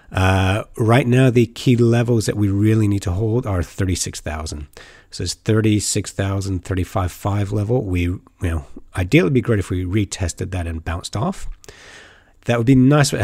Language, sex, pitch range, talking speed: English, male, 90-115 Hz, 175 wpm